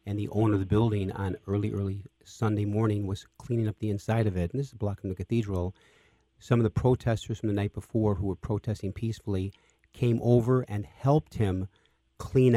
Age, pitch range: 40-59, 95-115 Hz